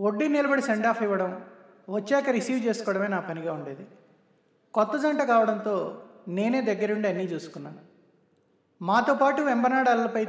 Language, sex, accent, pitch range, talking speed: Telugu, male, native, 185-235 Hz, 120 wpm